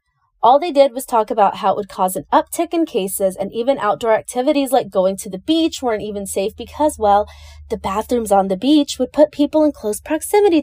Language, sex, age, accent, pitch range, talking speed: English, female, 20-39, American, 200-295 Hz, 220 wpm